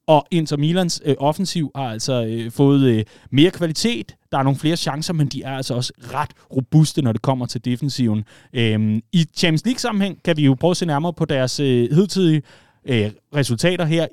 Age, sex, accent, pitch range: 30-49, male, native, 115-150 Hz